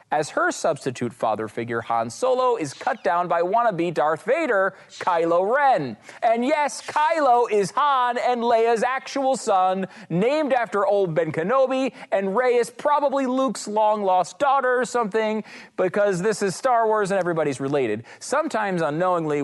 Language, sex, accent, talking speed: English, male, American, 150 wpm